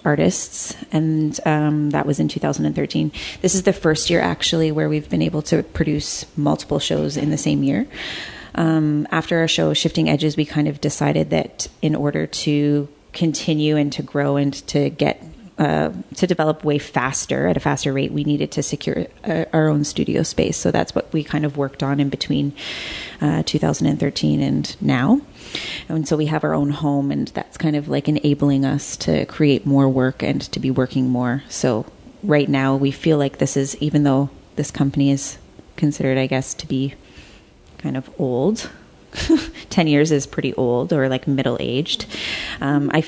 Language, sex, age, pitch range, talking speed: English, female, 30-49, 135-155 Hz, 180 wpm